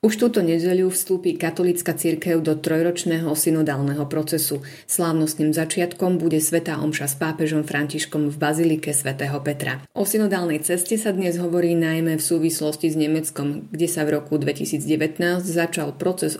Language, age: Slovak, 30-49